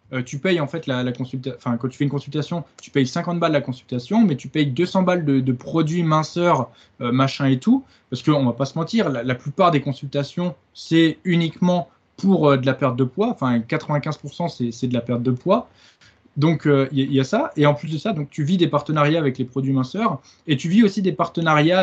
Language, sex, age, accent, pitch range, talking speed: French, male, 20-39, French, 125-165 Hz, 245 wpm